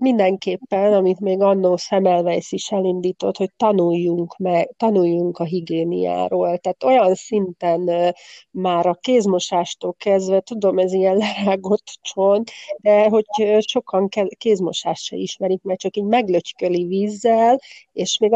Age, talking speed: 40-59, 125 wpm